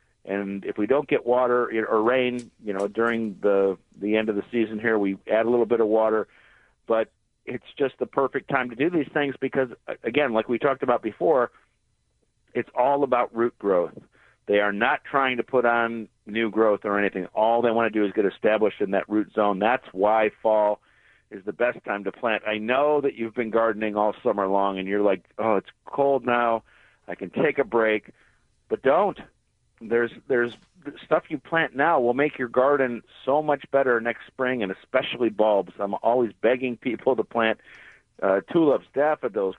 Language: English